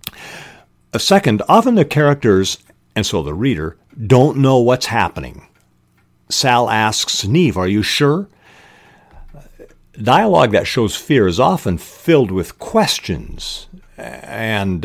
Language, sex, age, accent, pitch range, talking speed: English, male, 50-69, American, 90-135 Hz, 115 wpm